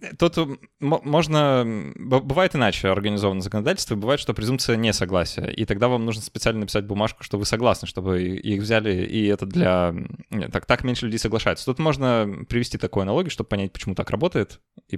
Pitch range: 100-120 Hz